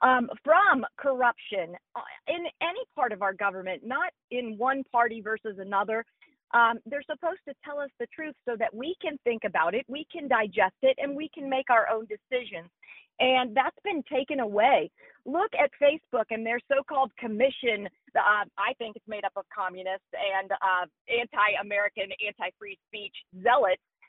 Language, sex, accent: English, female, American